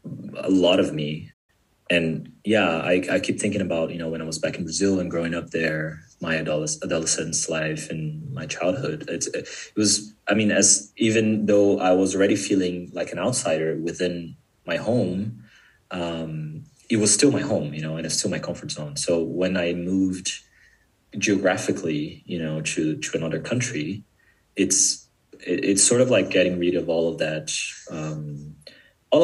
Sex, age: male, 30-49